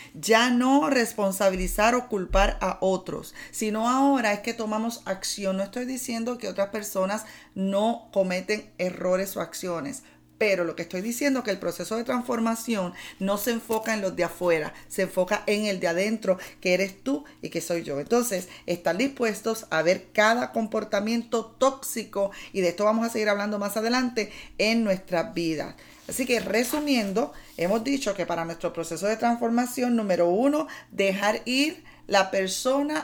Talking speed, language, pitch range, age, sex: 165 wpm, Spanish, 180-235 Hz, 40-59, female